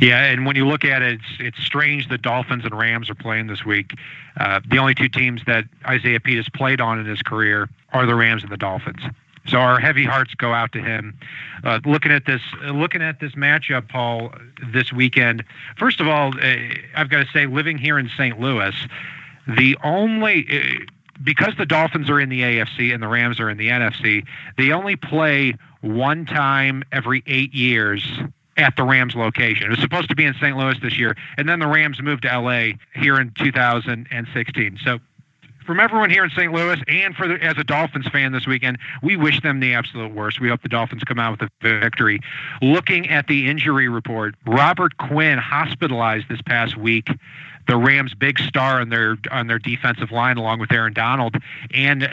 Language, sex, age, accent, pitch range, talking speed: English, male, 50-69, American, 120-145 Hz, 200 wpm